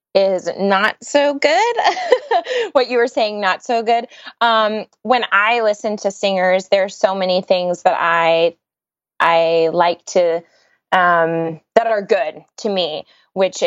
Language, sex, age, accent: English, female, 20-39, American